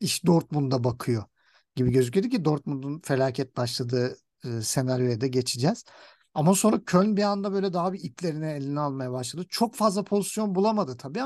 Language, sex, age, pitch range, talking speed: Turkish, male, 50-69, 140-185 Hz, 160 wpm